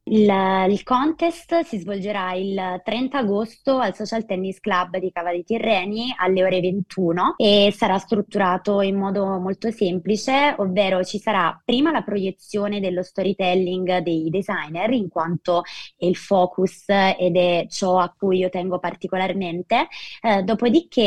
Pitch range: 185-220 Hz